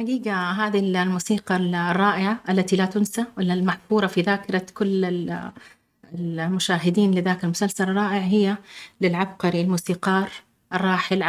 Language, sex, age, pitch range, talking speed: Arabic, female, 30-49, 180-215 Hz, 100 wpm